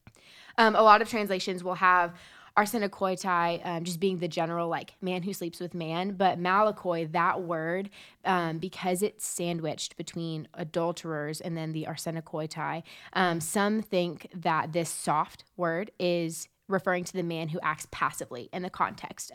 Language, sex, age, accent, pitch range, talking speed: English, female, 20-39, American, 155-185 Hz, 165 wpm